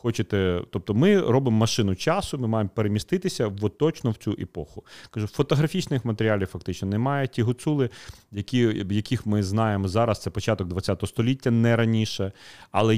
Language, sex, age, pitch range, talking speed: Ukrainian, male, 30-49, 100-120 Hz, 155 wpm